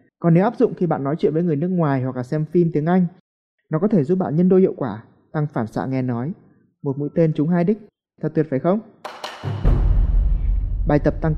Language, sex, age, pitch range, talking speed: Vietnamese, male, 20-39, 130-170 Hz, 235 wpm